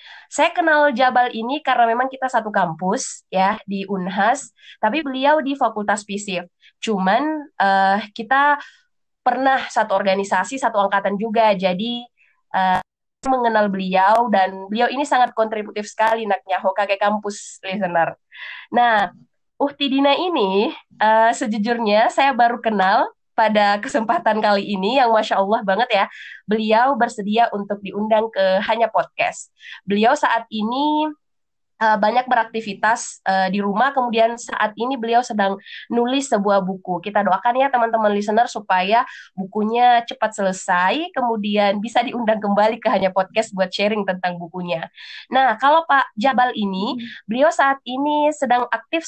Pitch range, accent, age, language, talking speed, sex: 200-250 Hz, native, 20-39, Indonesian, 135 wpm, female